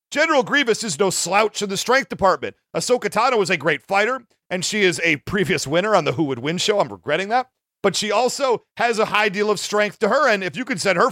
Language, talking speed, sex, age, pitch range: English, 255 wpm, male, 40-59, 180-230 Hz